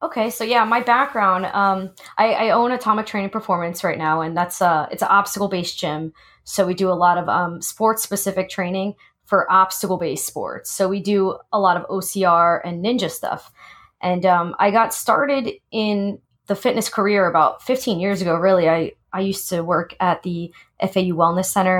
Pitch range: 185-220 Hz